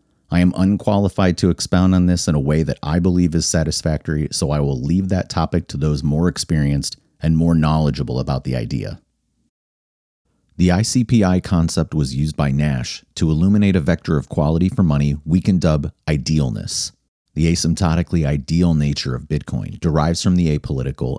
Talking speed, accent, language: 170 wpm, American, English